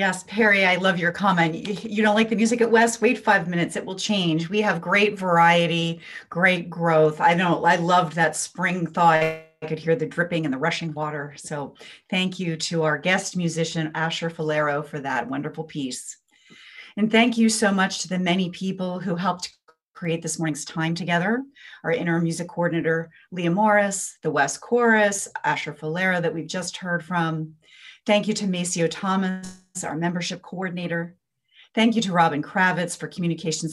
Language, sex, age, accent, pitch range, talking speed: English, female, 40-59, American, 155-190 Hz, 180 wpm